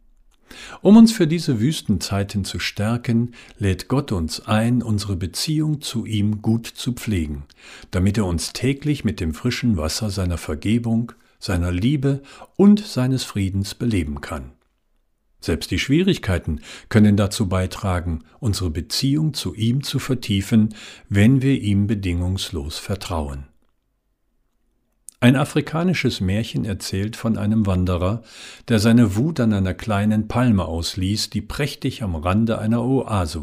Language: German